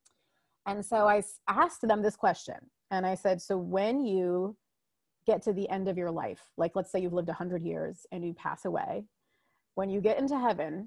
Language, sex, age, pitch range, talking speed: English, female, 30-49, 185-230 Hz, 205 wpm